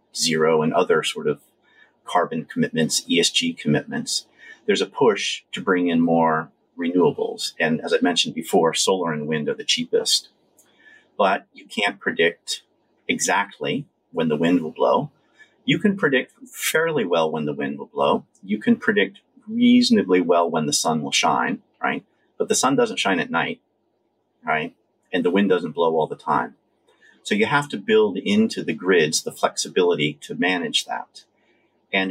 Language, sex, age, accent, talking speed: English, male, 40-59, American, 165 wpm